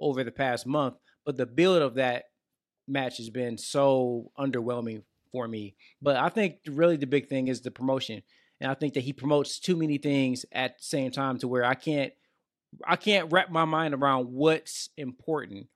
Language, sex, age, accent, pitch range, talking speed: English, male, 20-39, American, 135-180 Hz, 195 wpm